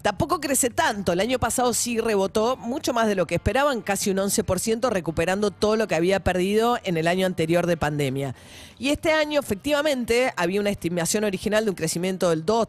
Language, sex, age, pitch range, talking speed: Spanish, female, 40-59, 180-230 Hz, 200 wpm